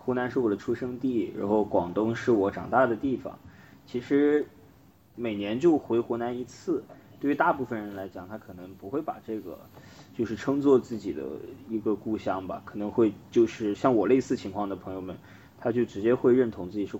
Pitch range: 95-120 Hz